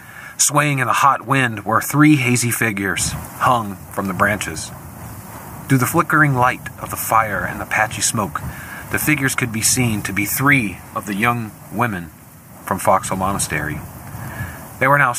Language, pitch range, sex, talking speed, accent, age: English, 110-130 Hz, male, 165 wpm, American, 40-59